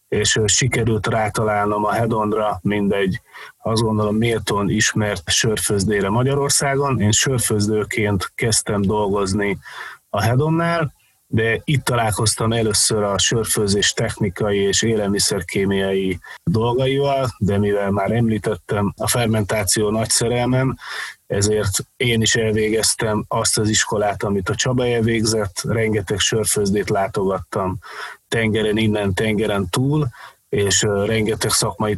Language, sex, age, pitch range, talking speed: Hungarian, male, 30-49, 105-120 Hz, 105 wpm